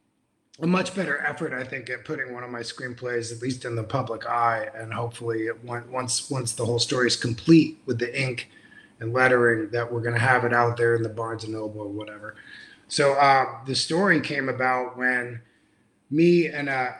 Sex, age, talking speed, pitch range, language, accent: male, 30-49, 200 wpm, 120-140 Hz, English, American